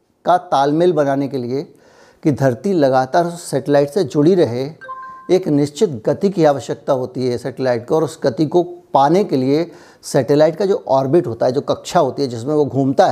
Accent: native